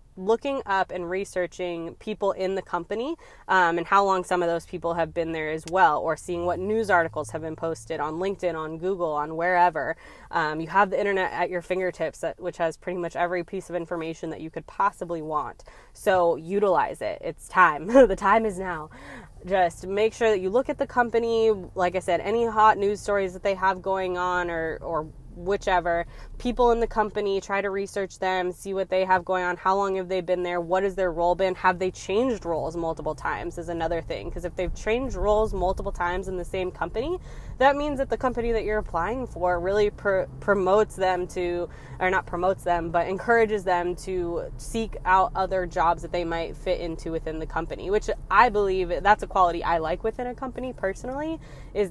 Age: 20-39